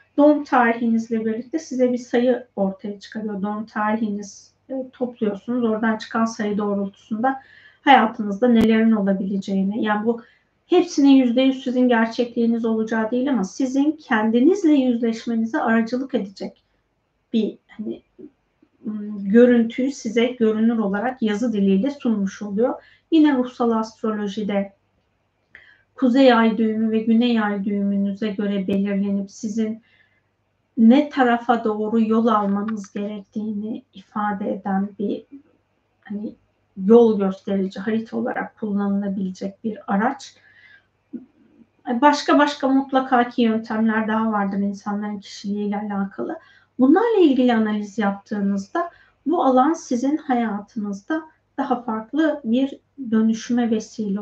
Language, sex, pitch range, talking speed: Turkish, female, 210-255 Hz, 105 wpm